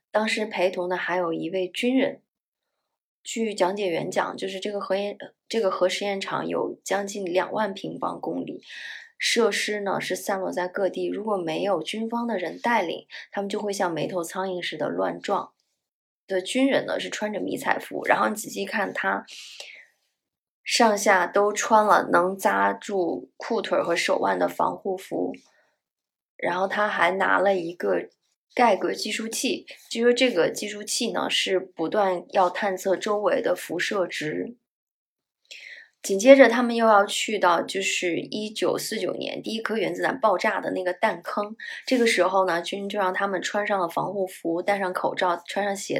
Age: 20-39